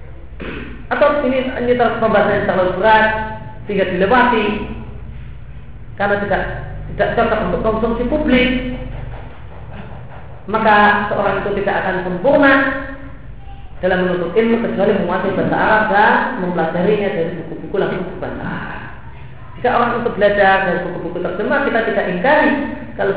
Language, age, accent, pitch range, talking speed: Indonesian, 40-59, native, 175-235 Hz, 120 wpm